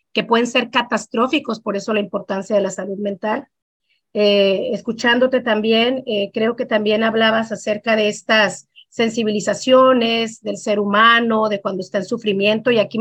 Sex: female